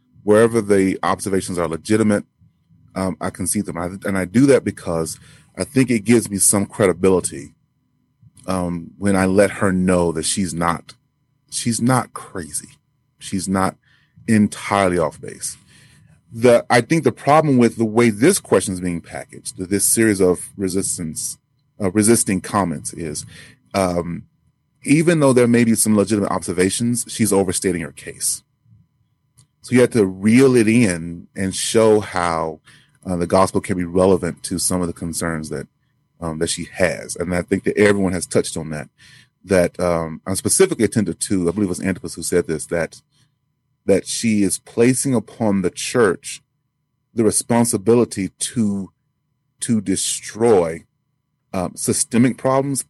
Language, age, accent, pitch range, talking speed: English, 30-49, American, 90-120 Hz, 160 wpm